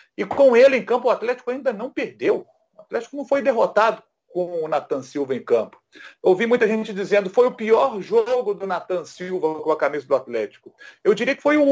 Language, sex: Portuguese, male